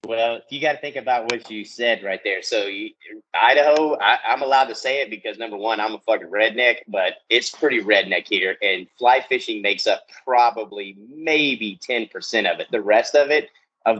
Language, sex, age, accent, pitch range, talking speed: English, male, 30-49, American, 105-150 Hz, 200 wpm